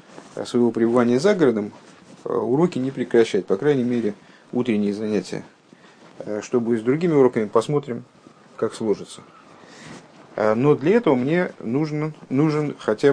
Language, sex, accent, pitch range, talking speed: Russian, male, native, 105-135 Hz, 125 wpm